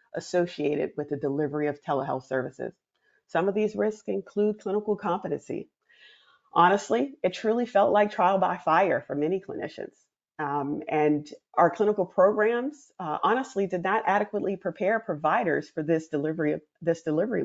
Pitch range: 150-195 Hz